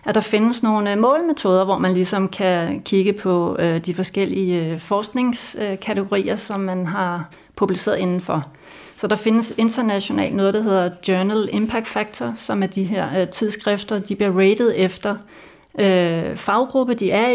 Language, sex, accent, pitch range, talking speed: Danish, female, native, 185-225 Hz, 140 wpm